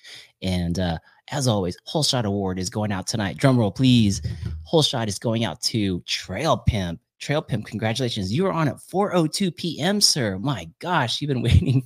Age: 30-49